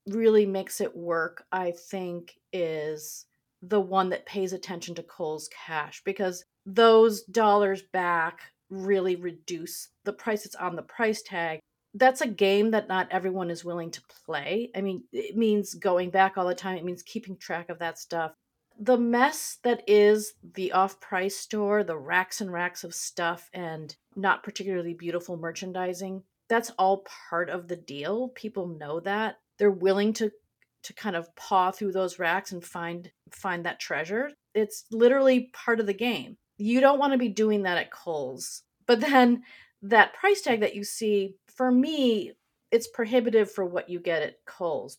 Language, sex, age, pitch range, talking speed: English, female, 40-59, 175-215 Hz, 170 wpm